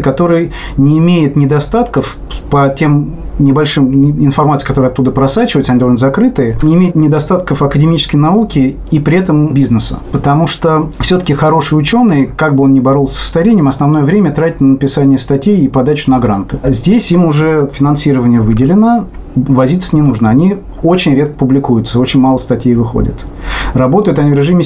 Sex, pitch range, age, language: male, 130-155 Hz, 30-49, Russian